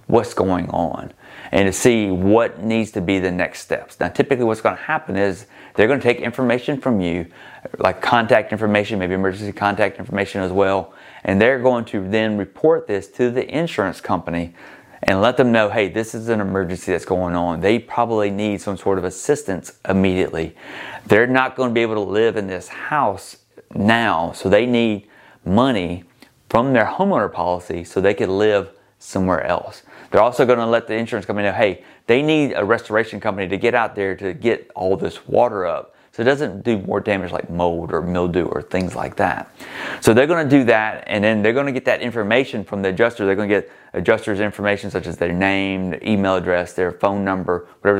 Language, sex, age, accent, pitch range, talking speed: English, male, 30-49, American, 95-115 Hz, 205 wpm